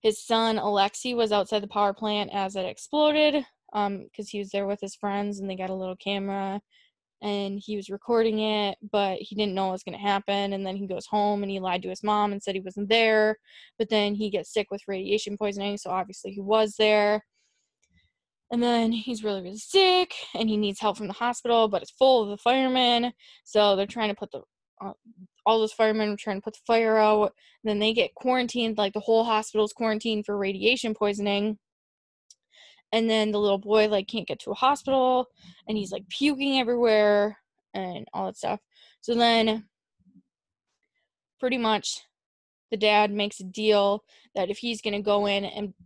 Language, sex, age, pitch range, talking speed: English, female, 10-29, 200-225 Hz, 200 wpm